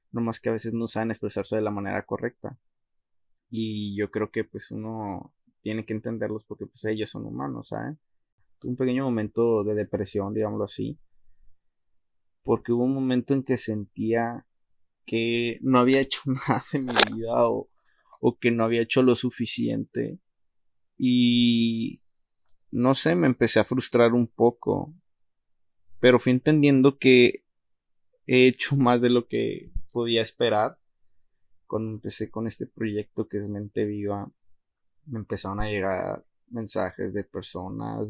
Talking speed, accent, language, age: 150 wpm, Mexican, Spanish, 20-39